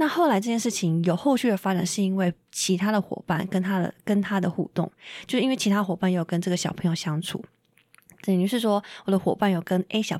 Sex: female